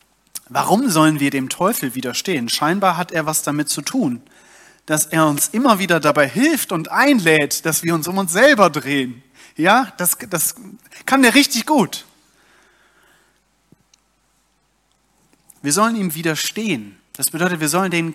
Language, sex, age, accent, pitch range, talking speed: German, male, 30-49, German, 145-205 Hz, 150 wpm